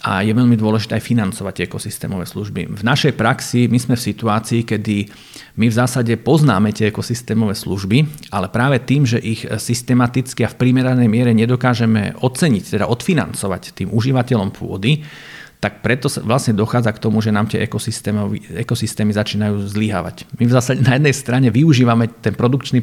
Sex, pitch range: male, 110-125 Hz